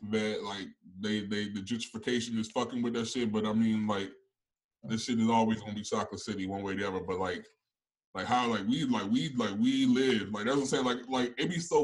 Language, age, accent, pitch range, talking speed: English, 20-39, American, 110-140 Hz, 245 wpm